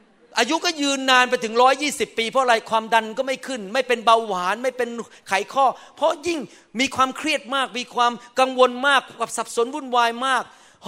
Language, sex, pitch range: Thai, male, 200-260 Hz